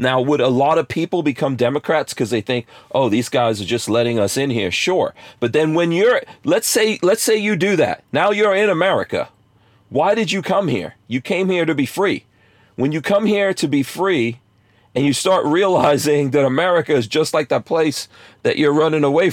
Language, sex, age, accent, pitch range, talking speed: English, male, 40-59, American, 120-165 Hz, 215 wpm